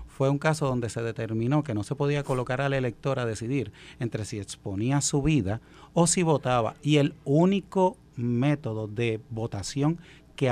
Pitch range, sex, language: 115-155 Hz, male, Spanish